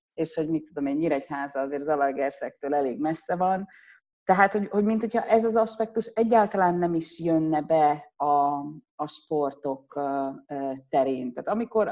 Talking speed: 150 wpm